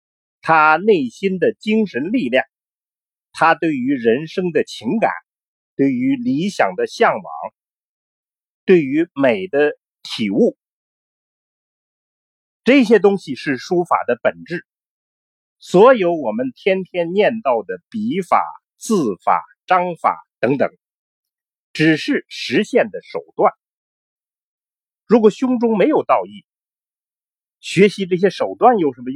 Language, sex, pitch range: Chinese, male, 175-260 Hz